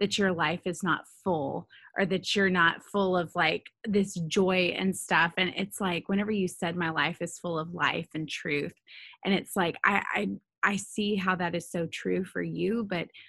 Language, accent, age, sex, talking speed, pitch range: English, American, 20-39, female, 210 wpm, 170-205 Hz